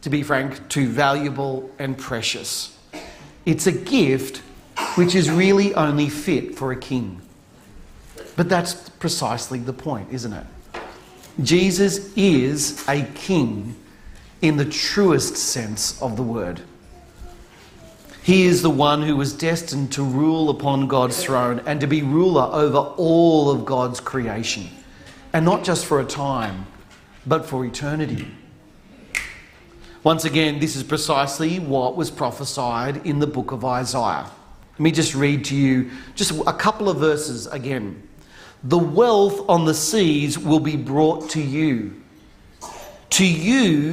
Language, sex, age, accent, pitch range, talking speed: English, male, 40-59, Australian, 130-170 Hz, 140 wpm